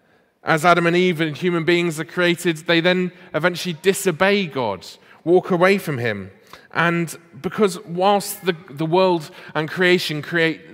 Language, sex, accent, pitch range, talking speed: English, male, British, 145-180 Hz, 150 wpm